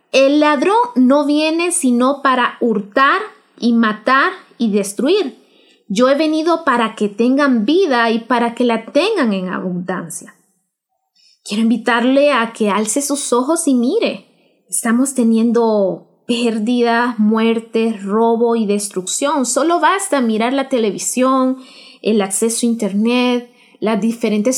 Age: 20-39